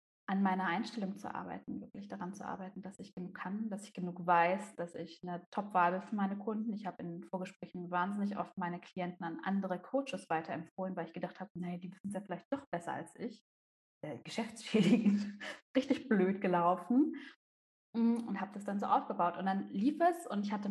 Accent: German